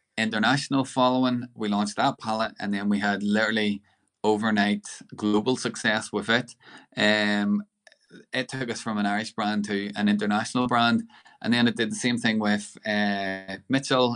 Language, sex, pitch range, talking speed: English, male, 105-120 Hz, 160 wpm